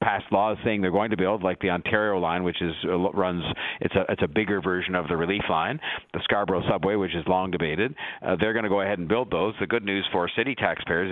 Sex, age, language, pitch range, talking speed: male, 50-69, English, 90-105 Hz, 255 wpm